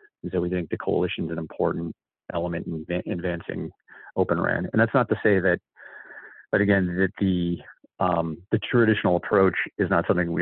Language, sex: English, male